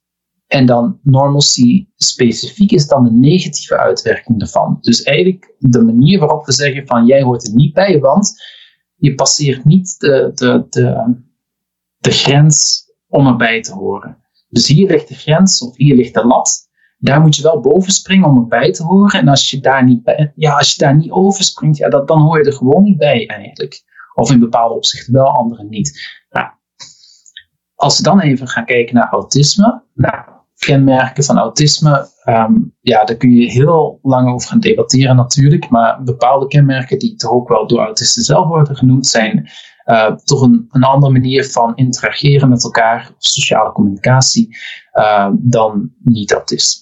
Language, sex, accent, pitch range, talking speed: Dutch, male, Dutch, 125-170 Hz, 160 wpm